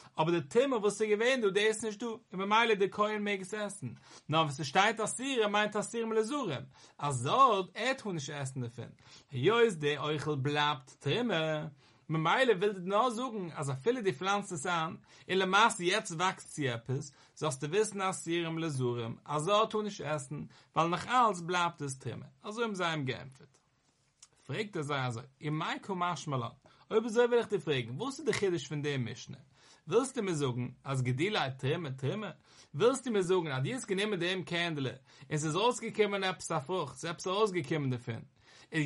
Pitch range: 145-205 Hz